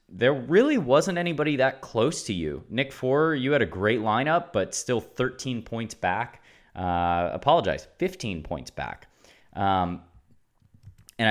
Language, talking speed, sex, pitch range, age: English, 145 wpm, male, 85-125 Hz, 20-39